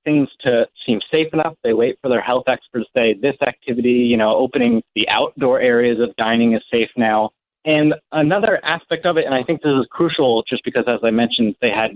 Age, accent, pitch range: 30-49, American, 120-150 Hz